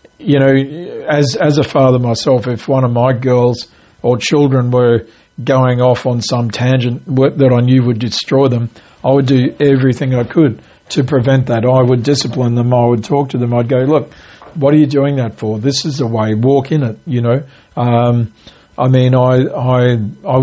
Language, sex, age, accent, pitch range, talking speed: English, male, 50-69, Australian, 120-135 Hz, 200 wpm